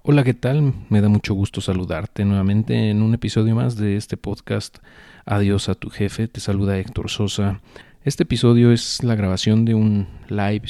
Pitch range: 95-115 Hz